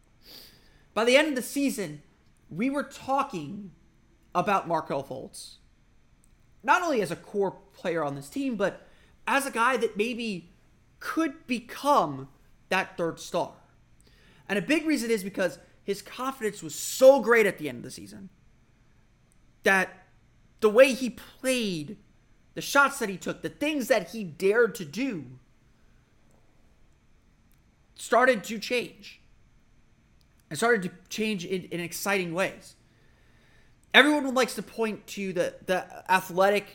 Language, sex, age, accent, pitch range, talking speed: English, male, 30-49, American, 165-230 Hz, 140 wpm